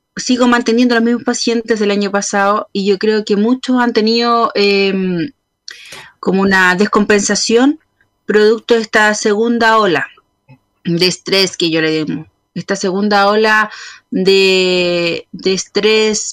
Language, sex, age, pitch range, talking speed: Spanish, female, 30-49, 190-230 Hz, 130 wpm